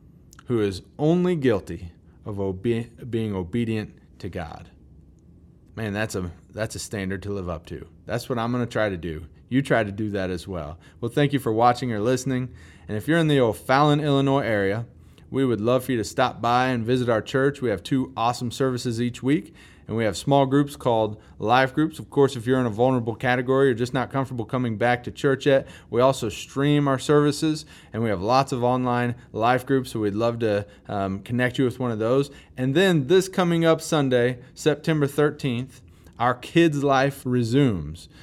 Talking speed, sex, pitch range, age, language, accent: 205 wpm, male, 110-135 Hz, 30-49, English, American